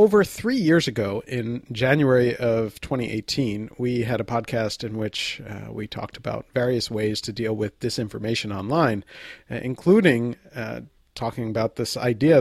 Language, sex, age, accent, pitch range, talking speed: English, male, 40-59, American, 110-135 Hz, 150 wpm